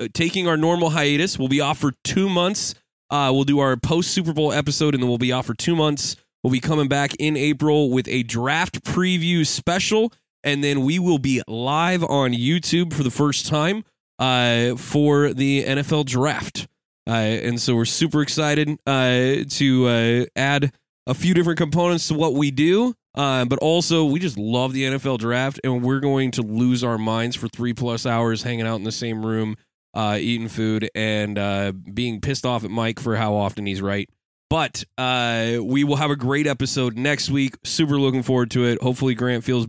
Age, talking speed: 20-39, 195 wpm